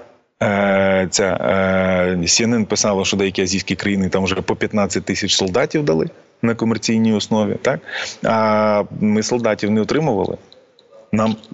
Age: 20-39